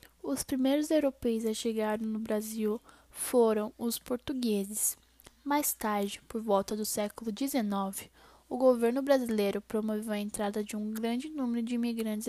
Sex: female